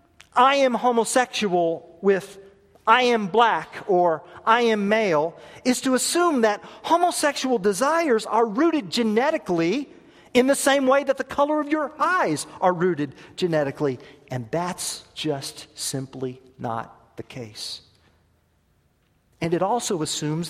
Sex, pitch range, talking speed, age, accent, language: male, 155-250 Hz, 130 wpm, 40-59, American, English